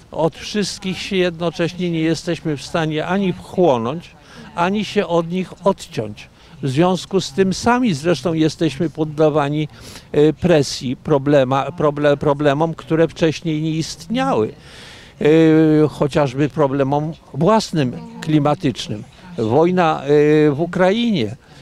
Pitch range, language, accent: 135-170 Hz, Polish, native